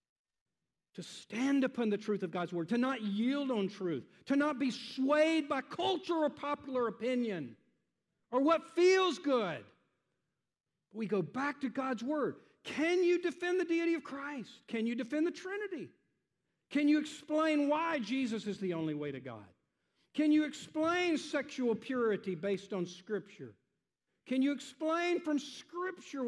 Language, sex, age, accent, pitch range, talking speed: English, male, 50-69, American, 190-285 Hz, 155 wpm